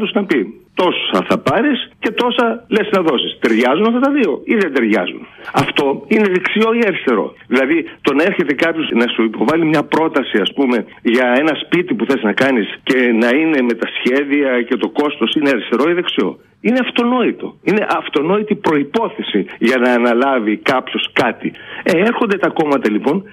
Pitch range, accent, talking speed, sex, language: 150-225 Hz, native, 175 wpm, male, Greek